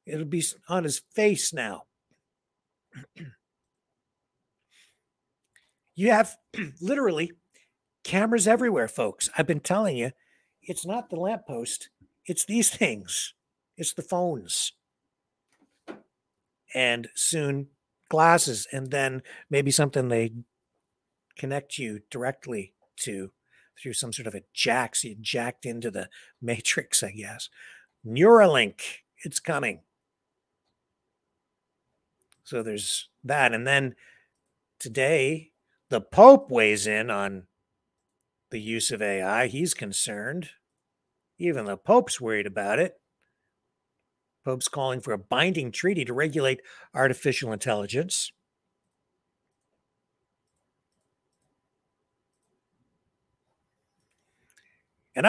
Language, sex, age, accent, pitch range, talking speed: English, male, 60-79, American, 120-175 Hz, 95 wpm